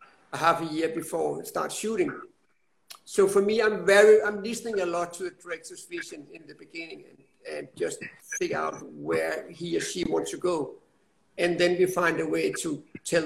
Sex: male